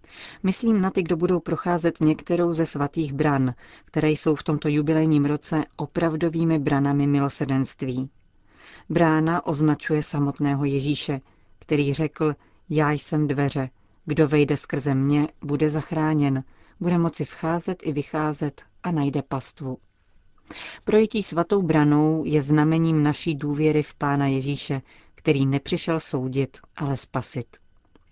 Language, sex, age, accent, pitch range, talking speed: Czech, female, 40-59, native, 140-165 Hz, 120 wpm